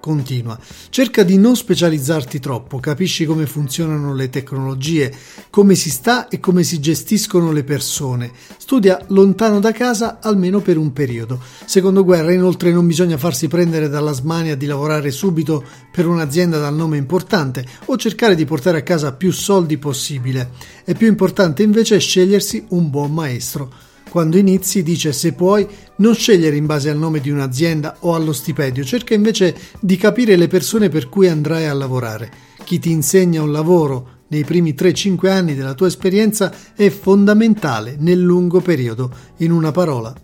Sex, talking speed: male, 165 wpm